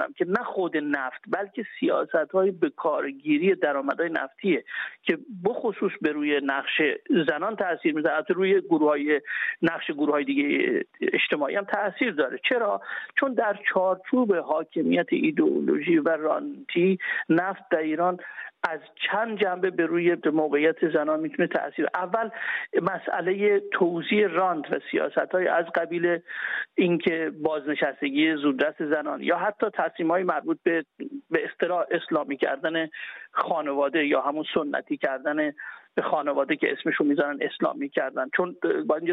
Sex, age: male, 50-69